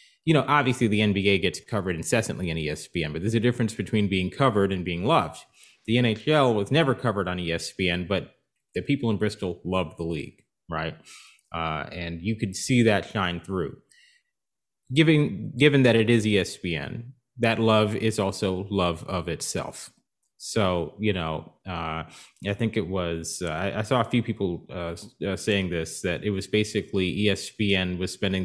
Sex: male